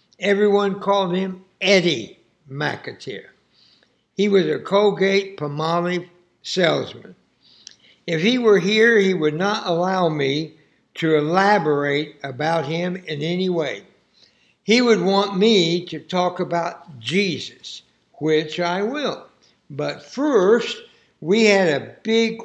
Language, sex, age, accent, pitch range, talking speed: English, male, 60-79, American, 160-200 Hz, 120 wpm